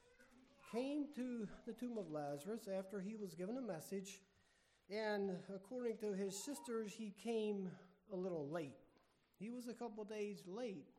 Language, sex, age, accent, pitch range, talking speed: English, male, 50-69, American, 155-215 Hz, 160 wpm